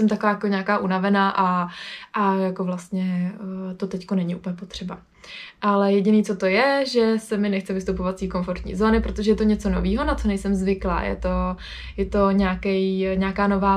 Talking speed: 190 wpm